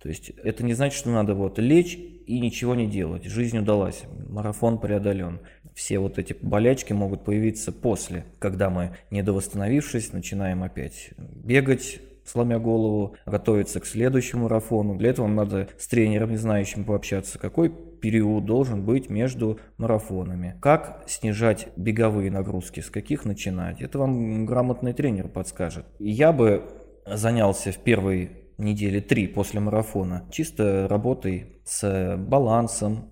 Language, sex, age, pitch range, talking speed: Russian, male, 20-39, 95-115 Hz, 140 wpm